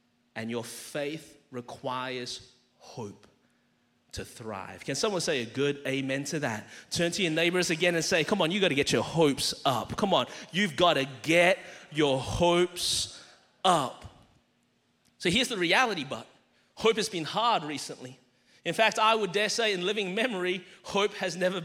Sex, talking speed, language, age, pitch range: male, 170 wpm, English, 30-49, 160-230 Hz